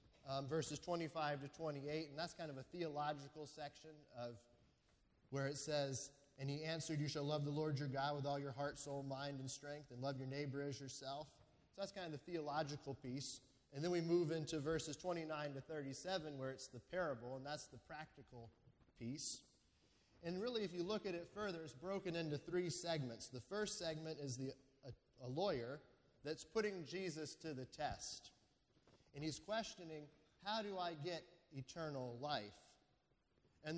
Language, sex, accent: English, male, American